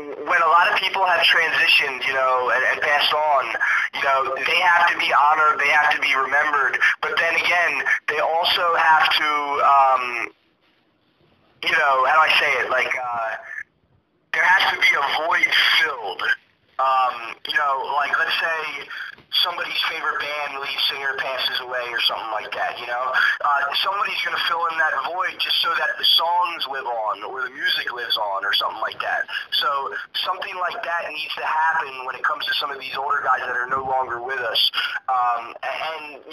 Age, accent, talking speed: 20-39, American, 190 wpm